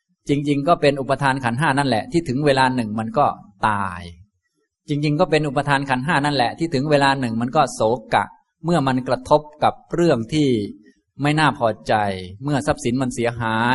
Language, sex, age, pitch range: Thai, male, 20-39, 110-150 Hz